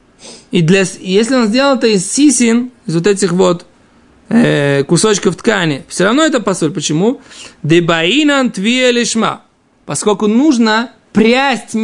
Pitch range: 180-245 Hz